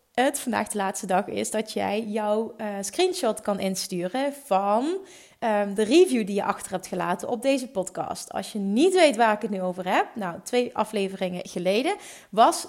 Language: Dutch